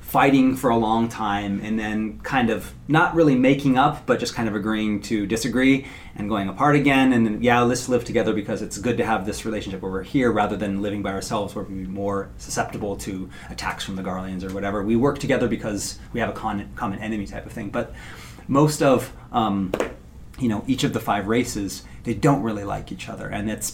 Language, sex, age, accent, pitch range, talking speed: English, male, 30-49, American, 100-115 Hz, 225 wpm